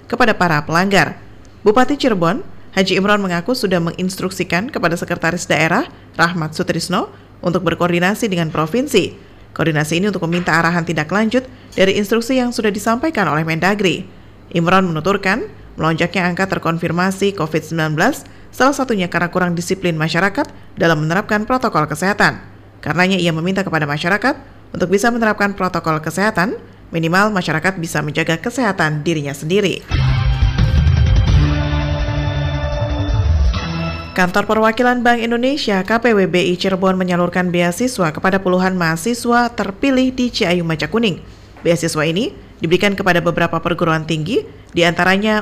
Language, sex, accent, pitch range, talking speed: Indonesian, female, native, 165-210 Hz, 120 wpm